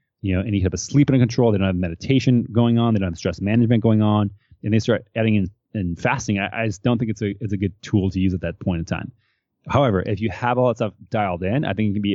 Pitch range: 100-115 Hz